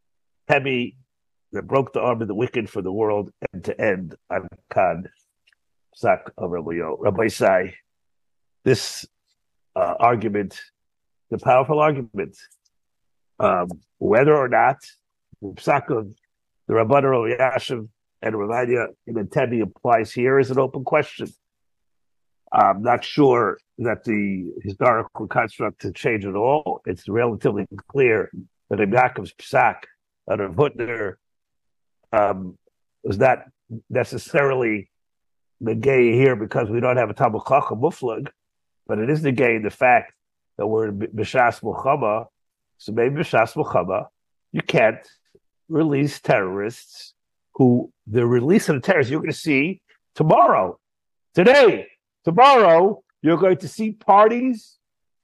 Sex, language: male, English